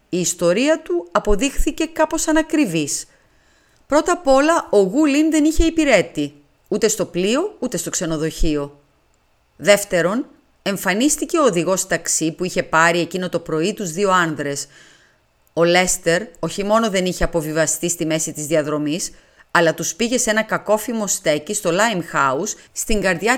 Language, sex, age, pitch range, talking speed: Greek, female, 30-49, 160-230 Hz, 145 wpm